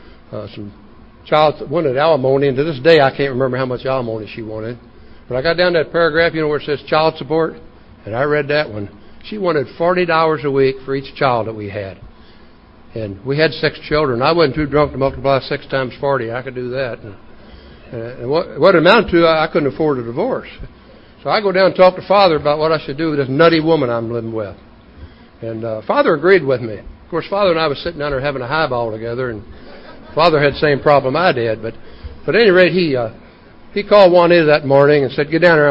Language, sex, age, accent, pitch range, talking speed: English, male, 60-79, American, 115-160 Hz, 235 wpm